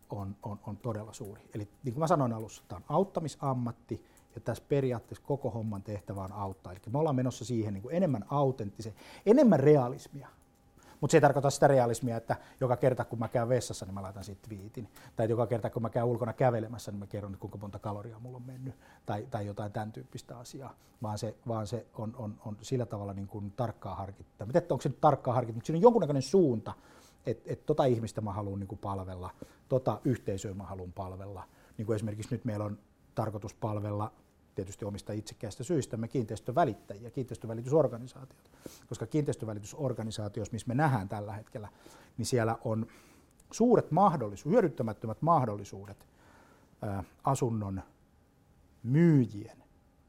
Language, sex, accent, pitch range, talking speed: Finnish, male, native, 105-130 Hz, 170 wpm